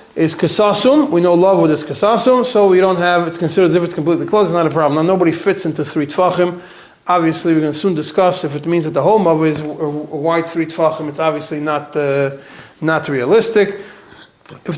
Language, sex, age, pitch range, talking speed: English, male, 30-49, 160-200 Hz, 220 wpm